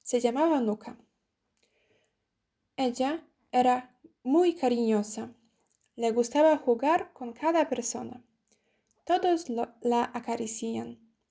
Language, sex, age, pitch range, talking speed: Spanish, female, 20-39, 225-255 Hz, 85 wpm